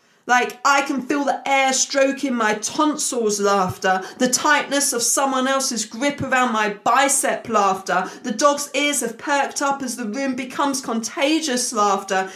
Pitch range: 215-270 Hz